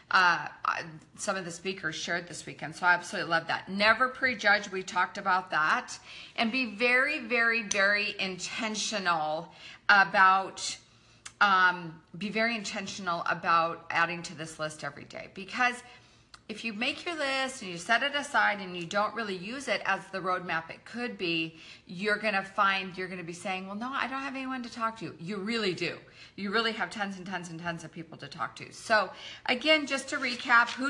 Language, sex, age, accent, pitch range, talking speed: English, female, 40-59, American, 180-235 Hz, 195 wpm